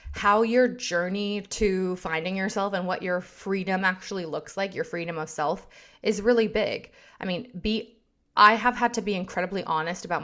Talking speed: 180 wpm